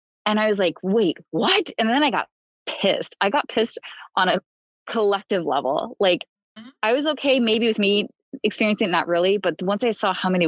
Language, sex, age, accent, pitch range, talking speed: English, female, 20-39, American, 160-200 Hz, 195 wpm